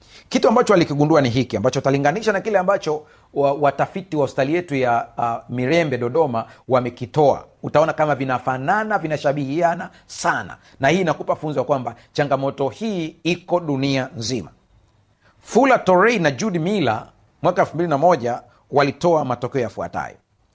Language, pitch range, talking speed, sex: Swahili, 120-175 Hz, 135 wpm, male